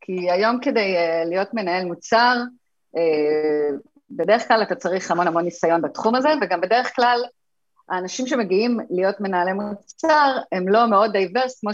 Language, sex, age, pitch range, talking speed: Hebrew, female, 30-49, 165-215 Hz, 145 wpm